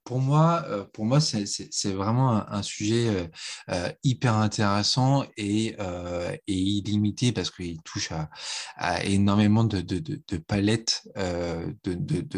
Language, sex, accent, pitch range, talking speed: French, male, French, 95-135 Hz, 110 wpm